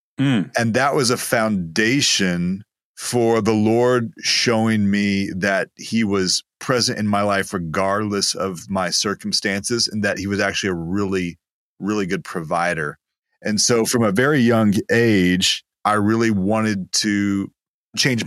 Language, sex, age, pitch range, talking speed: English, male, 30-49, 95-115 Hz, 140 wpm